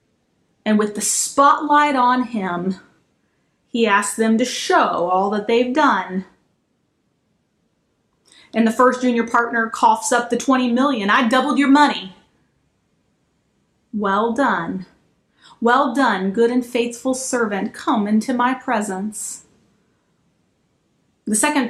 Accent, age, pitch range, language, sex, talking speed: American, 30-49, 210-275 Hz, English, female, 120 wpm